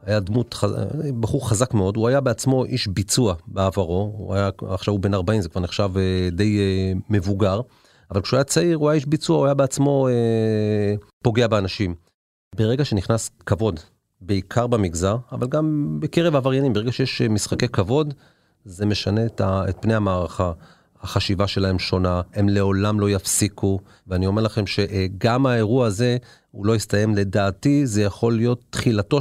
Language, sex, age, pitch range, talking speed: Hebrew, male, 40-59, 100-125 Hz, 150 wpm